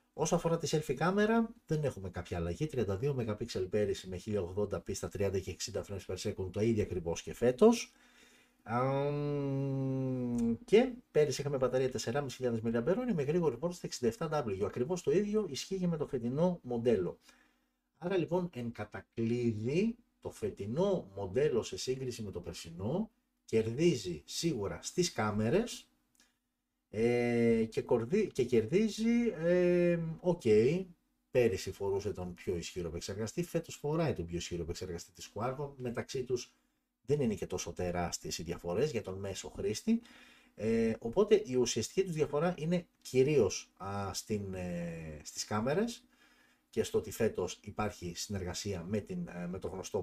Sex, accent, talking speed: male, native, 140 wpm